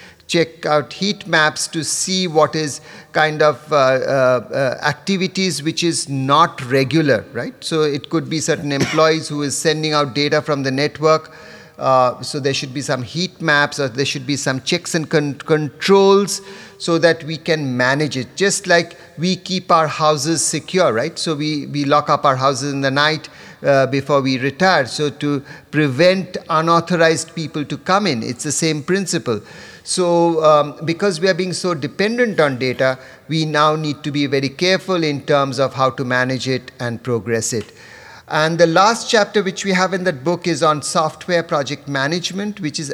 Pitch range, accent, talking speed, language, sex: 145-175 Hz, Indian, 185 wpm, English, male